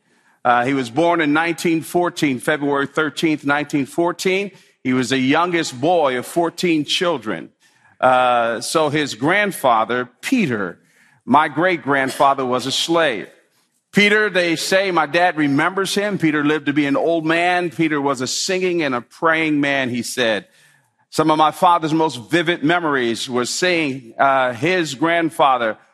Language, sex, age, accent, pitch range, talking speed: English, male, 50-69, American, 145-175 Hz, 145 wpm